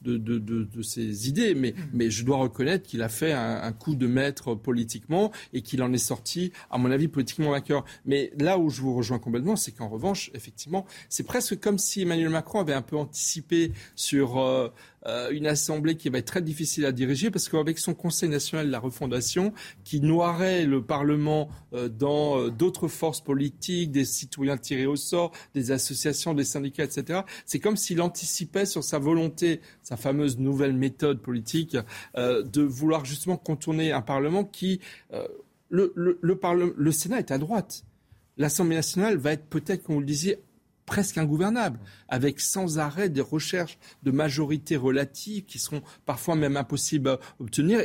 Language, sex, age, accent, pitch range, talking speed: French, male, 40-59, French, 135-175 Hz, 185 wpm